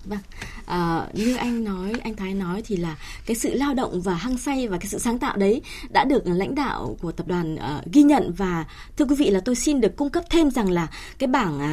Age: 20-39